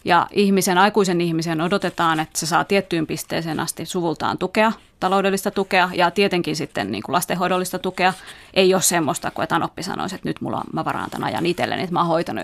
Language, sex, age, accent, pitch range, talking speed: Finnish, female, 30-49, native, 170-205 Hz, 200 wpm